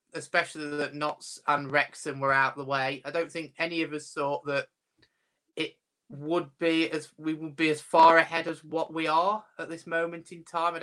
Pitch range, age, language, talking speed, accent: 135-165 Hz, 20-39, English, 210 wpm, British